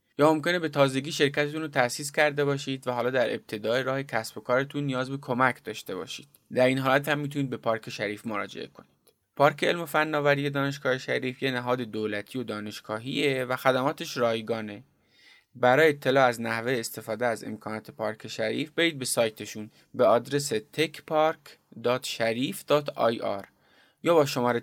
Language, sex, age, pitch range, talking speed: Persian, male, 20-39, 110-140 Hz, 155 wpm